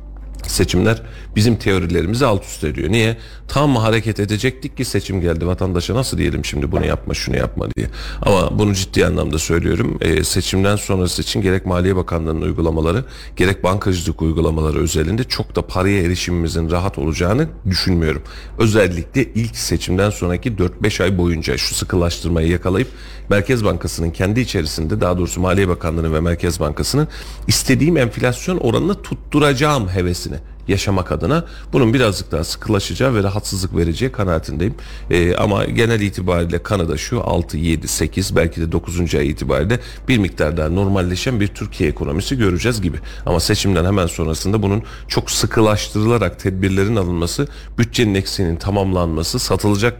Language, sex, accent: Turkish, male, native